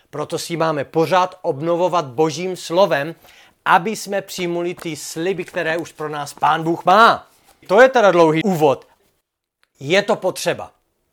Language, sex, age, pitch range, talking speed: Czech, male, 40-59, 160-205 Hz, 145 wpm